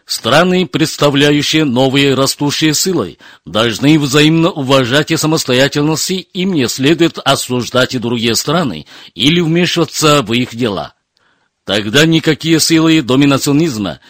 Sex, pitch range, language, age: male, 130-155 Hz, Russian, 50-69